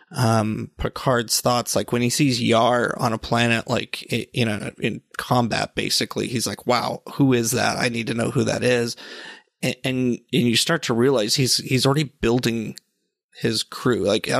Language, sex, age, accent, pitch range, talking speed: English, male, 30-49, American, 115-130 Hz, 190 wpm